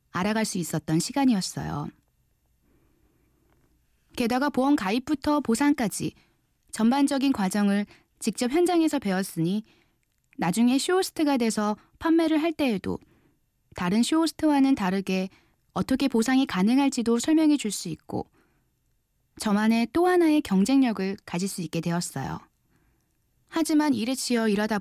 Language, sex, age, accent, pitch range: Korean, female, 20-39, native, 190-275 Hz